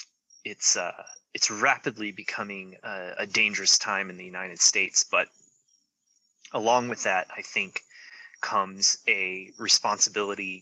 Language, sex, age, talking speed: English, male, 30-49, 125 wpm